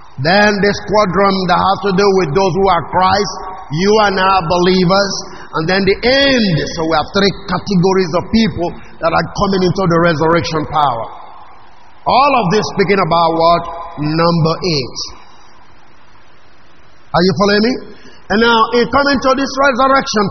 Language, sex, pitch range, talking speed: English, male, 175-220 Hz, 155 wpm